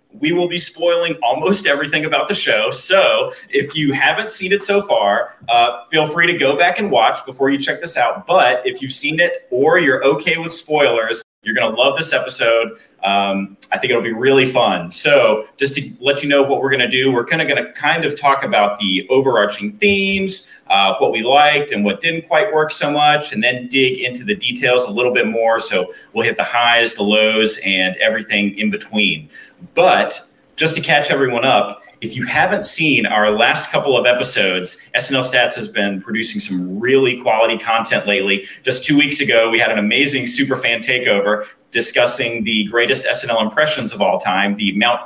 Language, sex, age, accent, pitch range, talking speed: English, male, 30-49, American, 115-155 Hz, 205 wpm